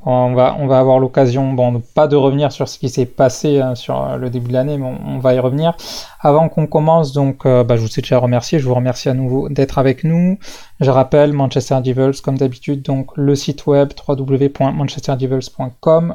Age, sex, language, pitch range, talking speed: 20-39, male, French, 130-145 Hz, 215 wpm